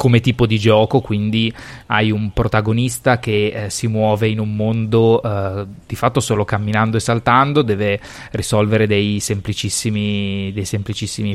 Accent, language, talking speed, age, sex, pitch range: native, Italian, 150 wpm, 20-39, male, 105-130 Hz